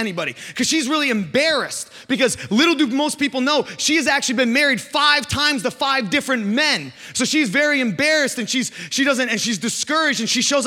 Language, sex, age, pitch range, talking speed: English, male, 20-39, 210-280 Hz, 200 wpm